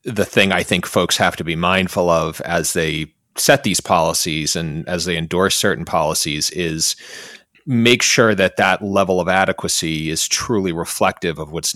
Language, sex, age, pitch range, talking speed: English, male, 30-49, 80-95 Hz, 175 wpm